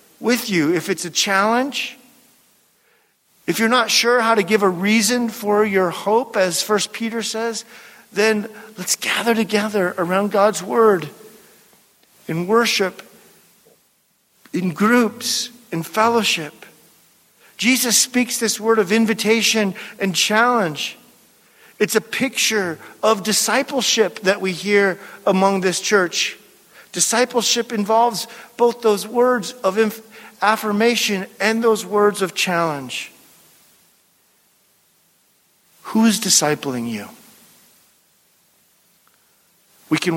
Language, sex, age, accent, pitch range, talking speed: English, male, 50-69, American, 185-230 Hz, 110 wpm